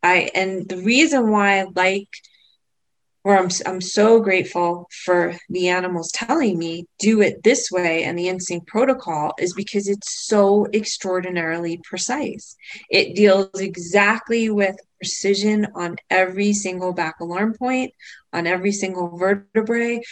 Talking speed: 135 wpm